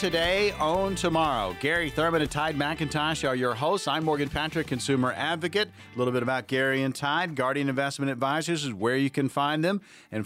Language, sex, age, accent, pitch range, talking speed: English, male, 50-69, American, 115-150 Hz, 195 wpm